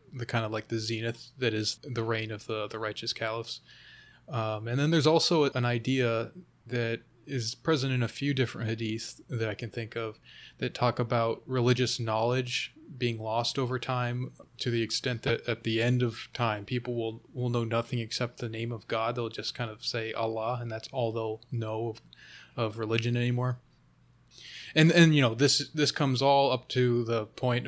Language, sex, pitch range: English, male, 115-135 Hz